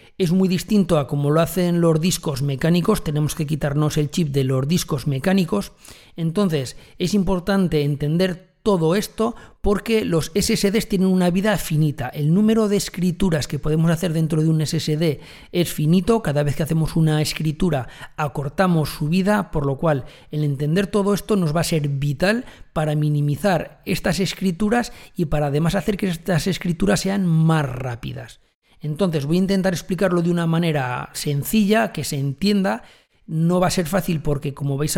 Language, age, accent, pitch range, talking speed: Spanish, 40-59, Spanish, 150-190 Hz, 170 wpm